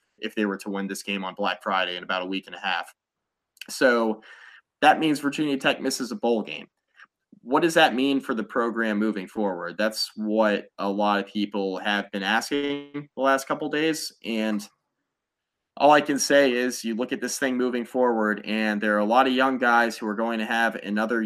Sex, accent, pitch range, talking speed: male, American, 105-130 Hz, 215 wpm